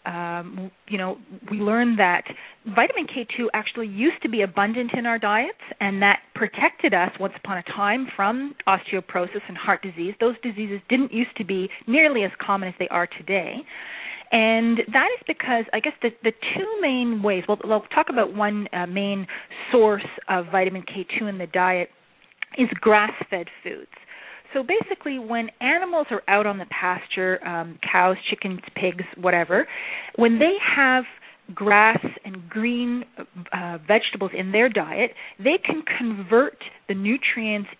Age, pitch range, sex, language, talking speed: 30-49, 190-235 Hz, female, English, 160 wpm